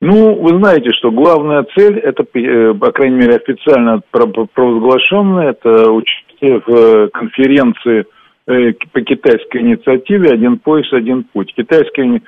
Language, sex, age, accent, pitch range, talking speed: Russian, male, 50-69, native, 120-190 Hz, 115 wpm